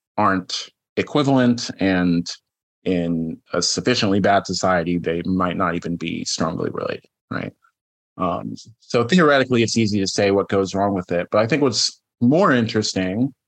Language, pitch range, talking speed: English, 100-120 Hz, 150 wpm